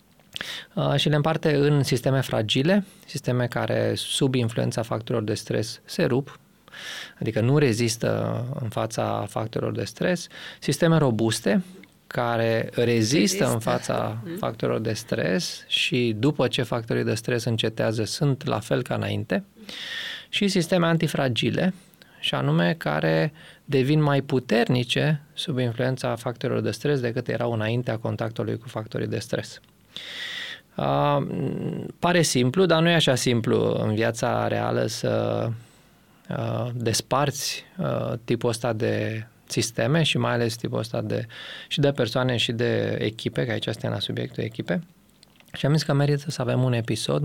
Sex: male